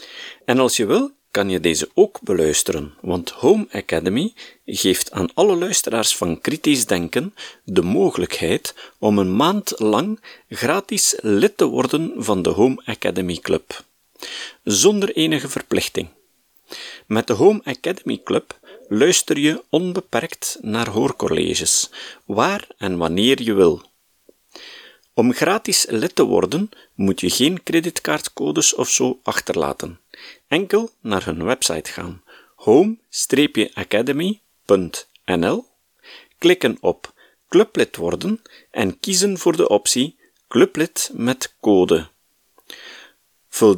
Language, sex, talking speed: Dutch, male, 115 wpm